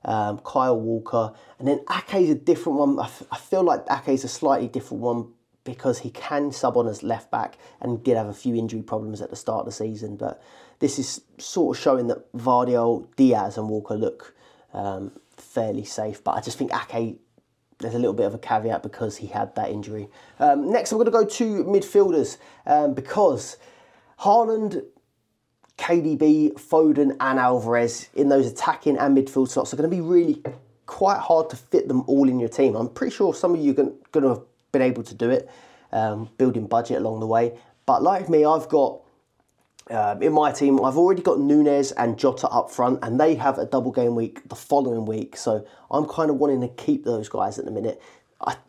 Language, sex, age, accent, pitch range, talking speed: English, male, 30-49, British, 115-155 Hz, 205 wpm